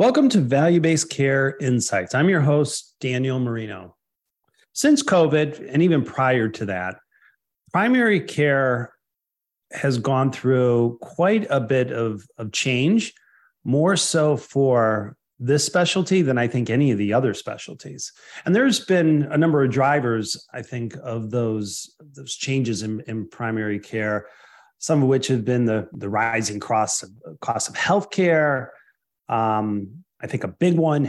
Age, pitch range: 40-59, 115-150 Hz